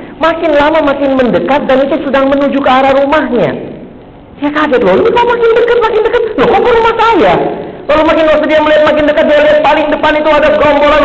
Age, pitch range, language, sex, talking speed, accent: 40-59, 185-300 Hz, Indonesian, male, 210 wpm, native